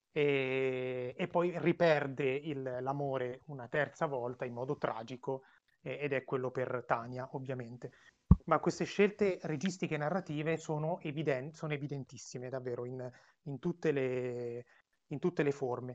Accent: native